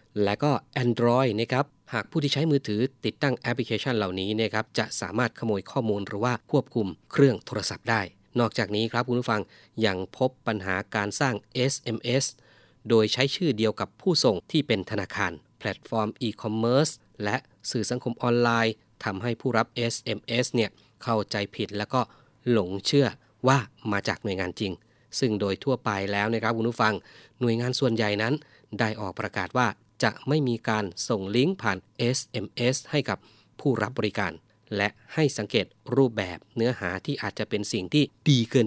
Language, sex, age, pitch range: Thai, male, 20-39, 105-130 Hz